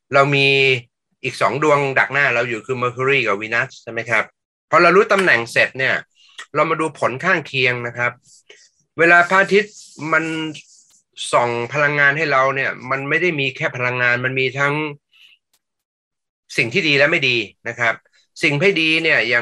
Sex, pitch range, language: male, 125-155 Hz, English